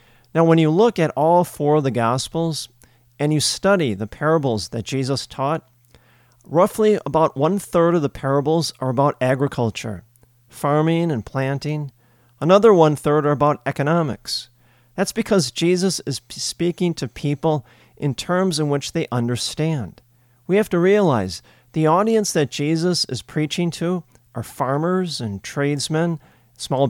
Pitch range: 120-160 Hz